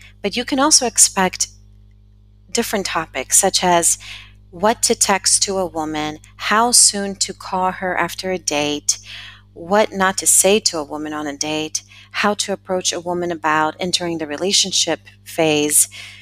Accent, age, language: American, 30-49, English